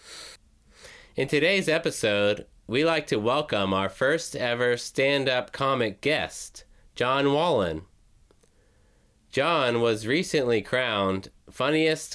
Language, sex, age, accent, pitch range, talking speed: English, male, 30-49, American, 95-135 Hz, 100 wpm